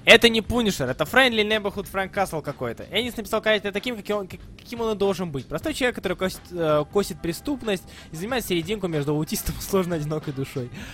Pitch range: 155-215 Hz